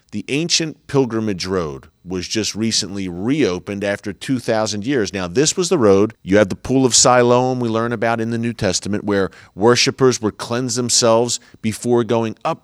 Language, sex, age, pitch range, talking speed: English, male, 40-59, 95-120 Hz, 175 wpm